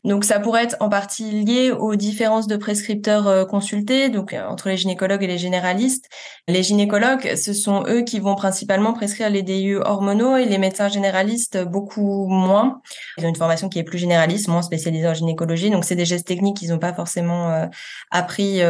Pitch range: 180-205 Hz